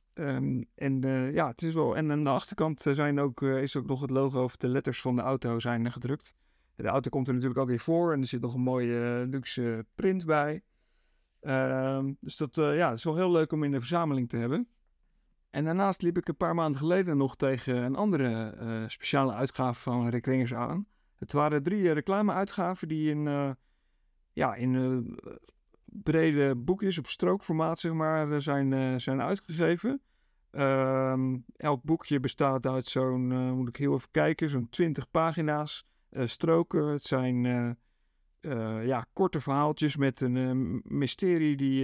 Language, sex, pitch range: Dutch, male, 130-160 Hz